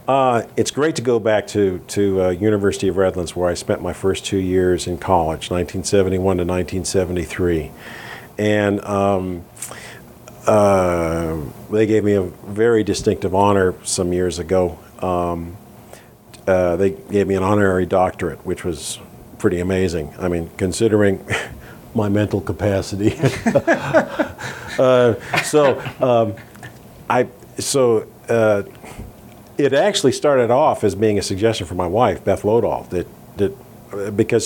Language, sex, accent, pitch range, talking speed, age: English, male, American, 95-110 Hz, 130 wpm, 50-69